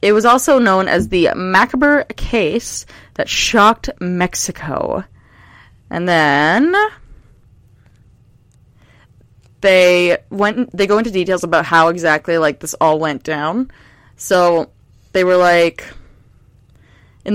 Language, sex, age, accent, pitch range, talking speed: English, female, 20-39, American, 150-215 Hz, 110 wpm